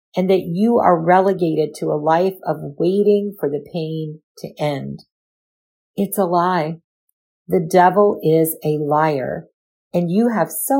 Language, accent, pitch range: English, American, 155-190 Hz